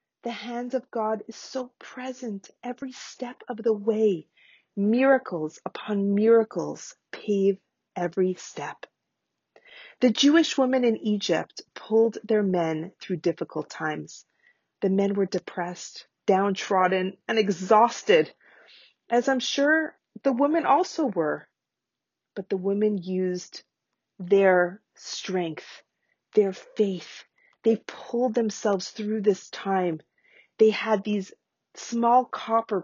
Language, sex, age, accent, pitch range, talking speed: English, female, 30-49, American, 195-250 Hz, 115 wpm